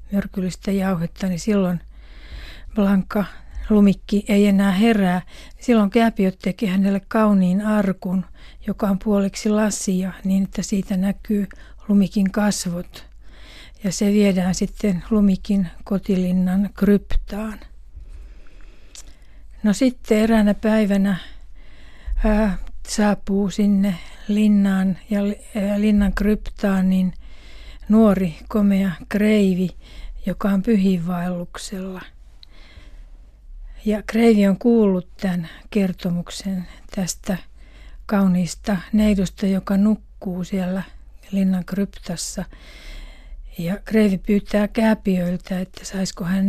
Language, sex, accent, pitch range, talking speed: Finnish, female, native, 185-210 Hz, 90 wpm